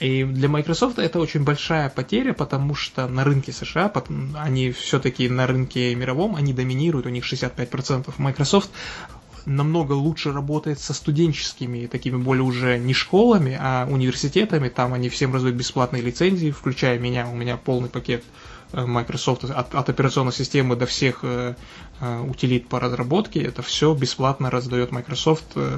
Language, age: Russian, 20-39